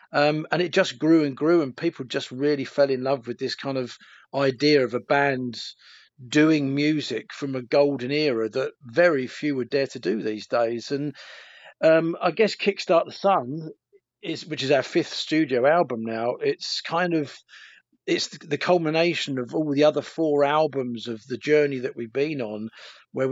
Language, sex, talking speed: English, male, 185 wpm